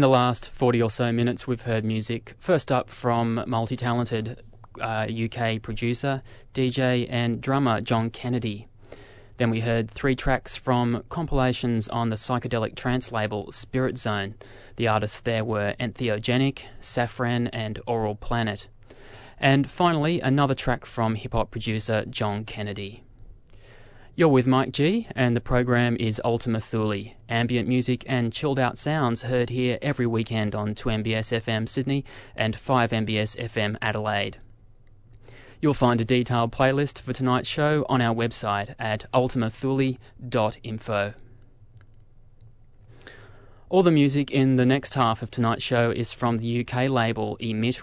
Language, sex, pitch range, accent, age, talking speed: English, male, 110-125 Hz, Australian, 20-39, 135 wpm